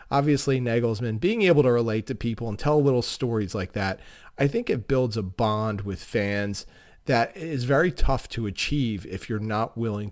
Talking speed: 190 wpm